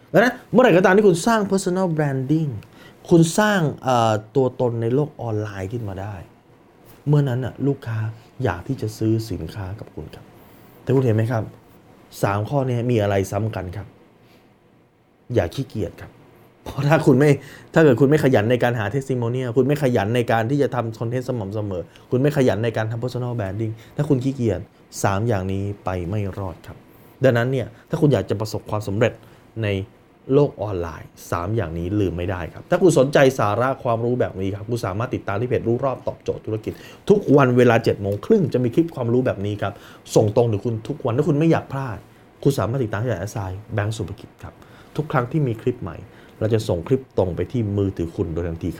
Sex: male